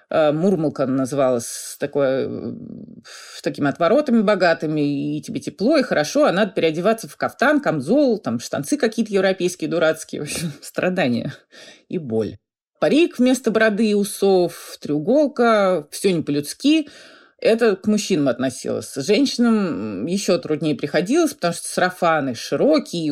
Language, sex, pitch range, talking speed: Russian, female, 150-225 Hz, 125 wpm